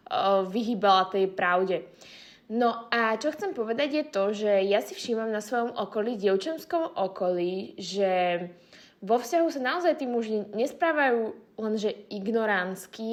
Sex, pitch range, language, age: female, 200-240 Hz, Slovak, 20-39